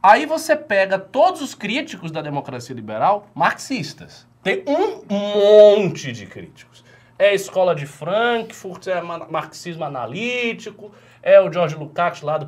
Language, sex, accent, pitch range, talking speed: Portuguese, male, Brazilian, 135-225 Hz, 145 wpm